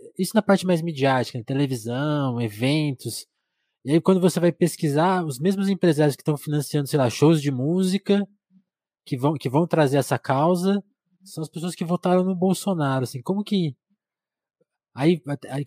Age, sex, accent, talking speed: 20-39, male, Brazilian, 170 wpm